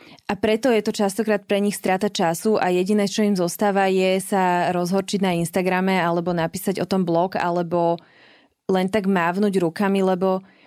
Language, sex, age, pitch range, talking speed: Slovak, female, 20-39, 175-210 Hz, 170 wpm